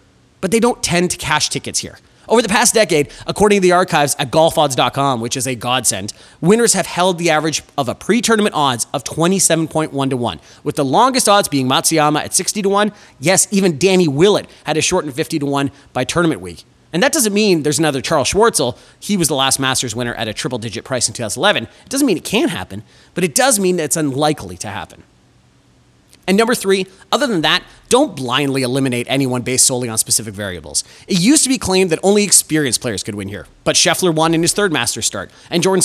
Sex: male